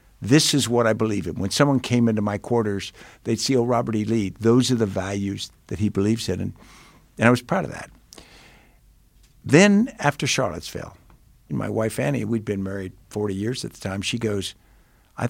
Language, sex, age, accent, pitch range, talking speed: English, male, 60-79, American, 100-125 Hz, 195 wpm